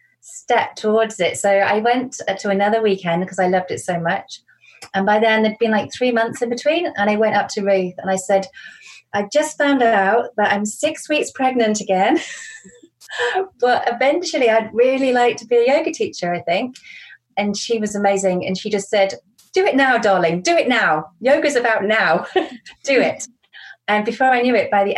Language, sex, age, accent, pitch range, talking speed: English, female, 30-49, British, 190-240 Hz, 200 wpm